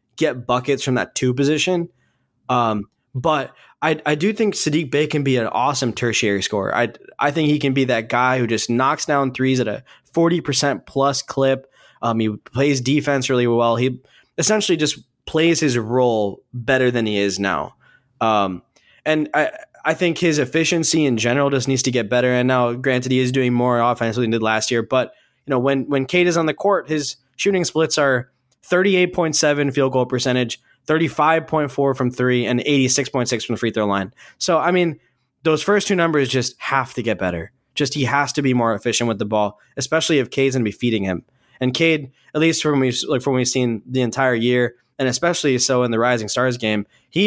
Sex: male